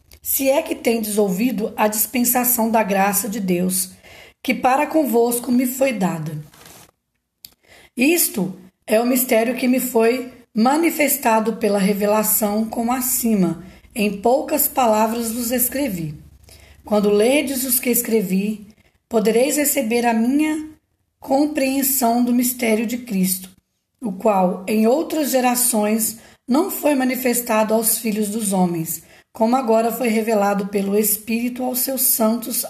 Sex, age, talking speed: female, 20-39, 125 wpm